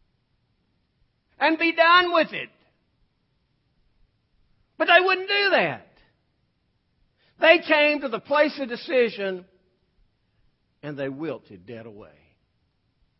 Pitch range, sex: 205-295 Hz, male